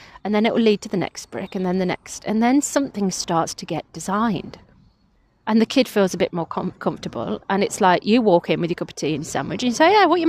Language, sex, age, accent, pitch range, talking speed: English, female, 30-49, British, 180-230 Hz, 280 wpm